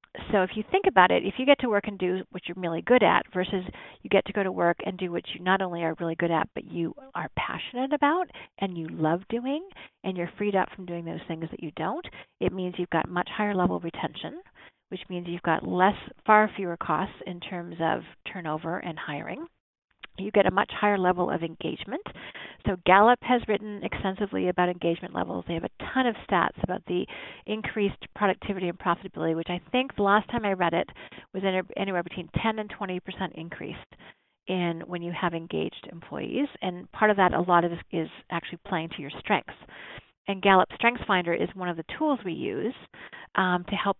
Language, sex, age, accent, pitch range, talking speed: English, female, 40-59, American, 170-205 Hz, 215 wpm